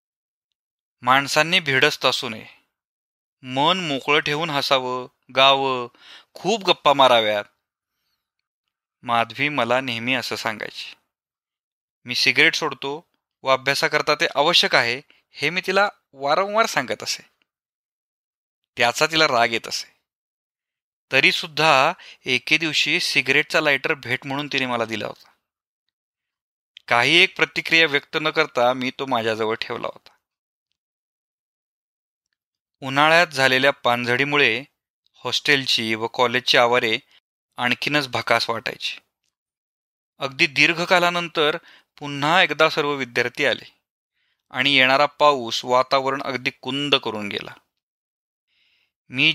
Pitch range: 125-150 Hz